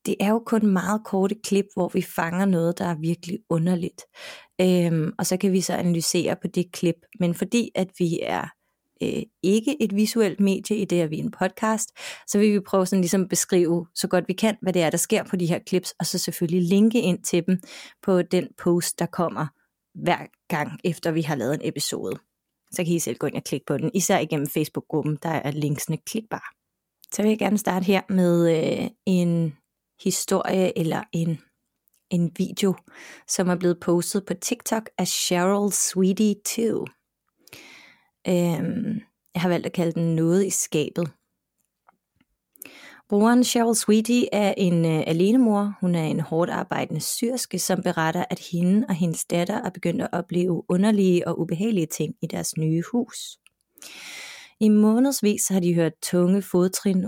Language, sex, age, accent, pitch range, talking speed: Danish, female, 30-49, native, 170-205 Hz, 180 wpm